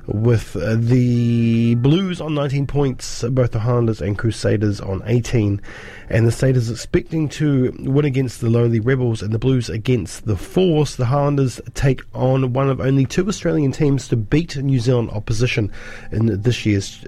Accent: Australian